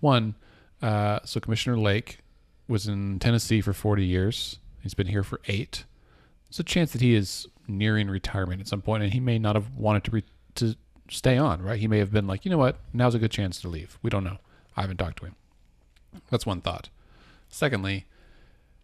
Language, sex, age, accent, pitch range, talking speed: English, male, 40-59, American, 95-115 Hz, 205 wpm